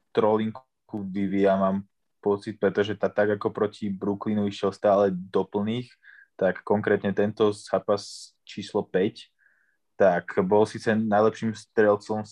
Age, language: 20-39, Slovak